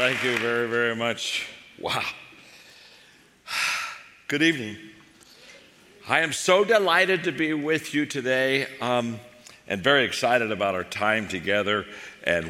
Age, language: 60-79, English